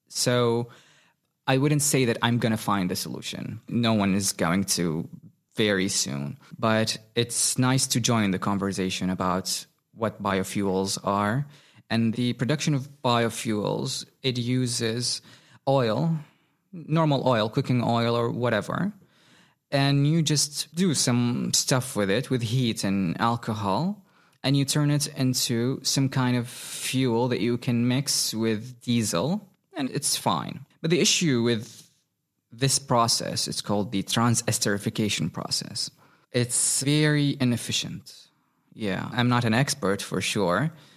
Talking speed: 140 wpm